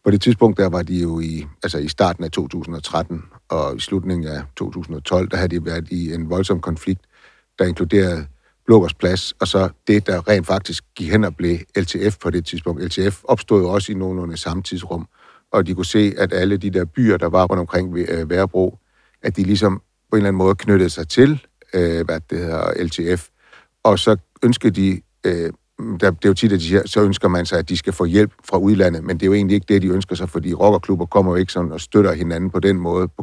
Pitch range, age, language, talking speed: 85-100 Hz, 60-79, Danish, 225 wpm